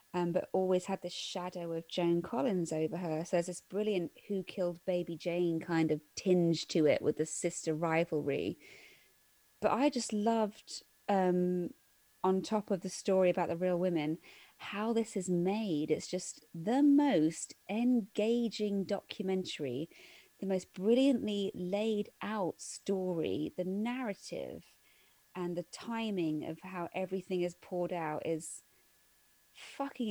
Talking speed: 140 wpm